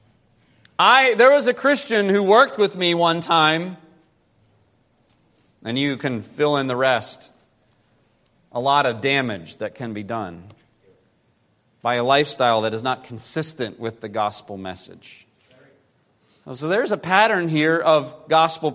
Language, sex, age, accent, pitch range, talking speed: English, male, 40-59, American, 130-200 Hz, 140 wpm